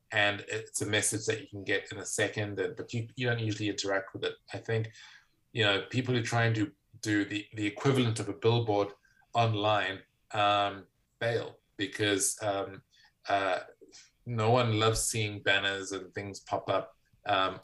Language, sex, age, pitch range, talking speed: English, male, 20-39, 100-120 Hz, 175 wpm